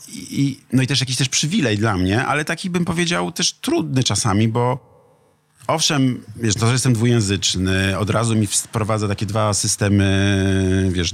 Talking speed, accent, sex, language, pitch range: 165 wpm, native, male, Polish, 95-125 Hz